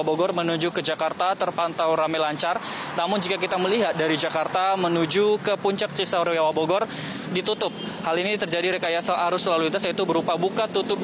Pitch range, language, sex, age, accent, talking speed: 165-190 Hz, Indonesian, male, 20-39, native, 160 wpm